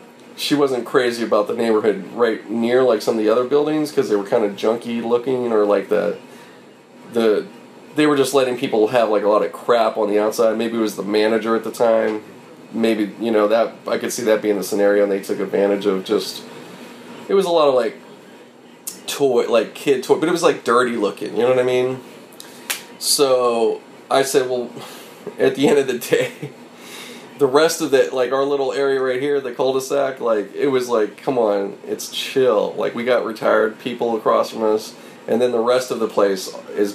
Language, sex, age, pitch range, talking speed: English, male, 30-49, 110-150 Hz, 215 wpm